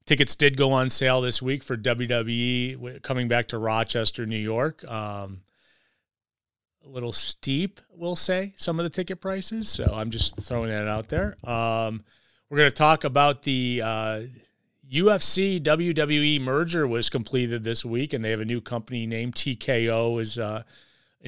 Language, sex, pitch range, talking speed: English, male, 115-140 Hz, 165 wpm